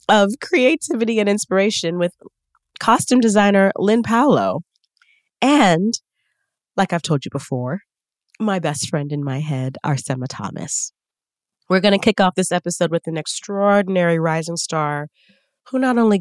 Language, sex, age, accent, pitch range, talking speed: English, female, 30-49, American, 160-225 Hz, 140 wpm